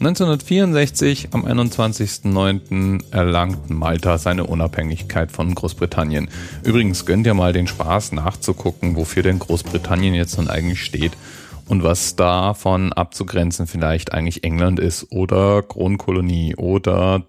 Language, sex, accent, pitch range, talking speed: German, male, German, 85-105 Hz, 120 wpm